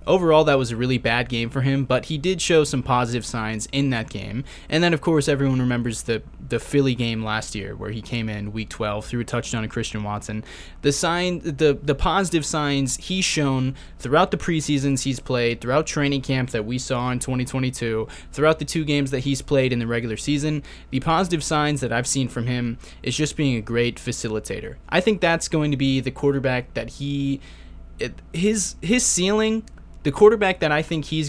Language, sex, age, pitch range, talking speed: English, male, 20-39, 115-155 Hz, 205 wpm